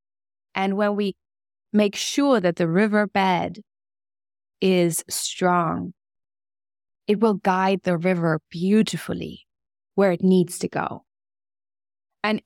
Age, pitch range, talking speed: 20-39, 145-195 Hz, 105 wpm